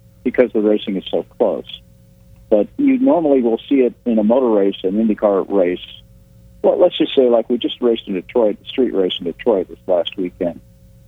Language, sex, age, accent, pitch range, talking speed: English, male, 50-69, American, 95-115 Hz, 195 wpm